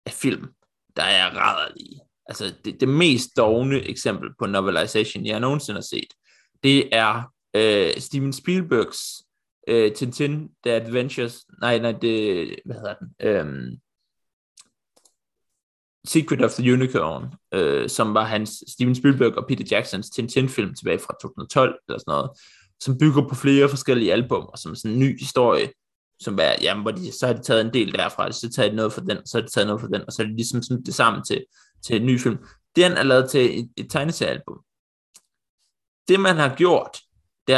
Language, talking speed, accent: Danish, 195 wpm, native